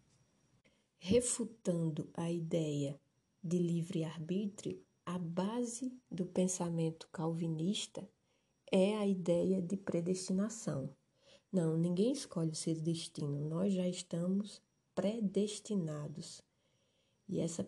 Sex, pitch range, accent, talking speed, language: female, 165-195 Hz, Brazilian, 90 wpm, Portuguese